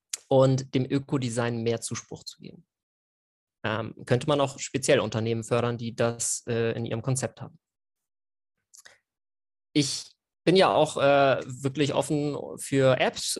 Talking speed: 135 wpm